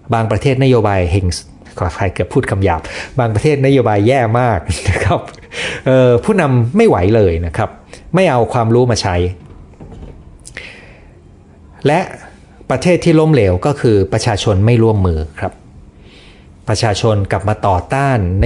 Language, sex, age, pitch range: Thai, male, 30-49, 90-125 Hz